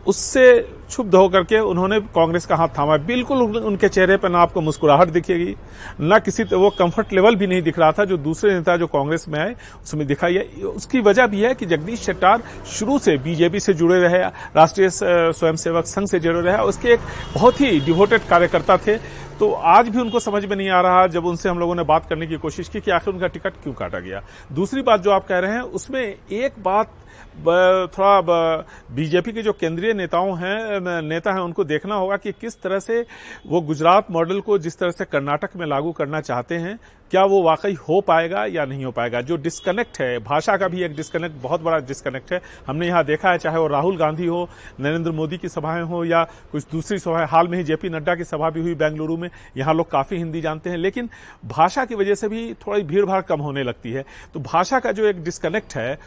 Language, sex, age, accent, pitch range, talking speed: Hindi, male, 40-59, native, 160-200 Hz, 225 wpm